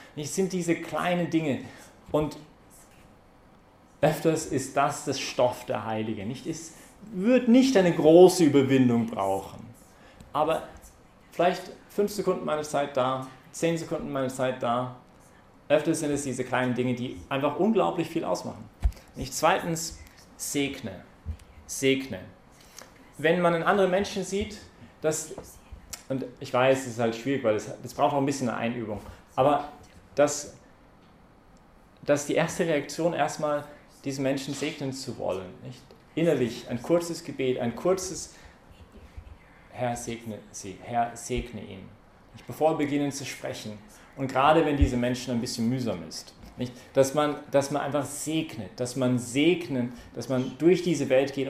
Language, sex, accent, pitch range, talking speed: English, male, German, 120-155 Hz, 145 wpm